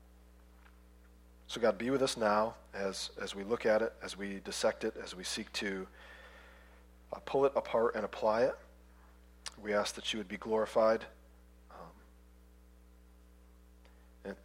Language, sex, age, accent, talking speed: English, male, 40-59, American, 150 wpm